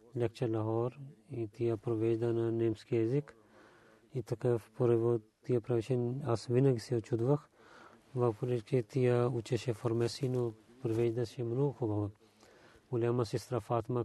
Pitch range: 110-125 Hz